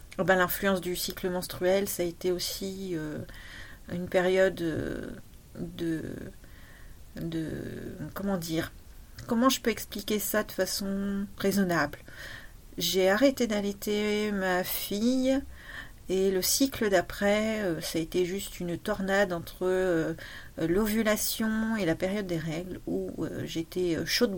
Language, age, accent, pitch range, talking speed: French, 40-59, French, 175-205 Hz, 120 wpm